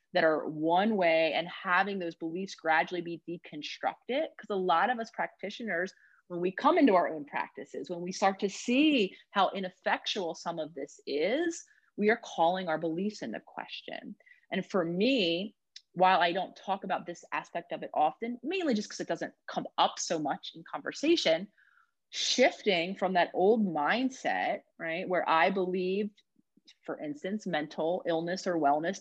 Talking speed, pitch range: 170 wpm, 170-215 Hz